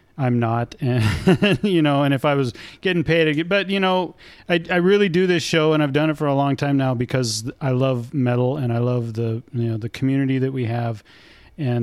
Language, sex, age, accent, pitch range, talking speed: English, male, 40-59, American, 125-155 Hz, 235 wpm